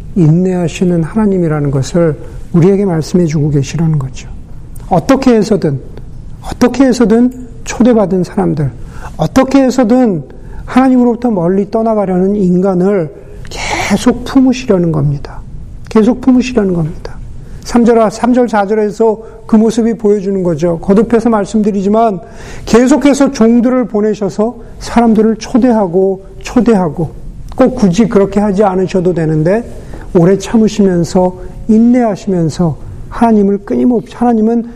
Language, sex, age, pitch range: Korean, male, 50-69, 170-230 Hz